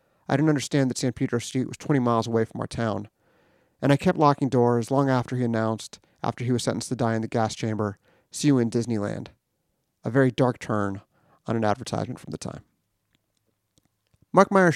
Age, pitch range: 30-49, 115-135 Hz